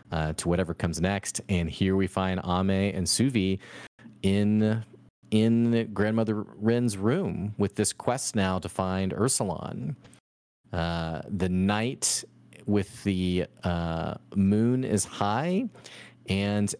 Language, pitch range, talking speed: English, 90-110 Hz, 120 wpm